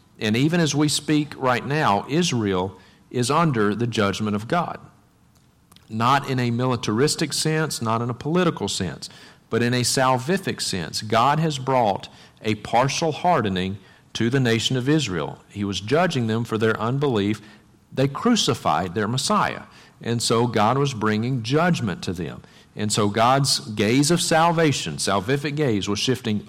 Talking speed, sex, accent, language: 155 wpm, male, American, English